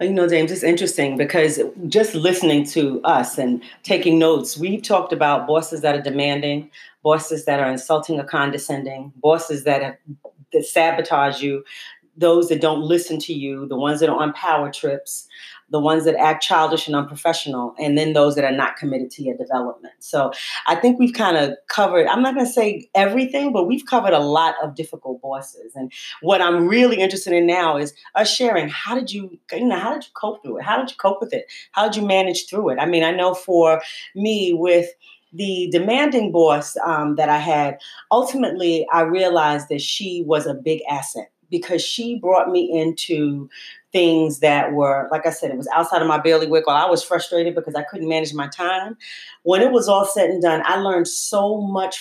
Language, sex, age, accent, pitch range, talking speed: English, female, 40-59, American, 150-195 Hz, 205 wpm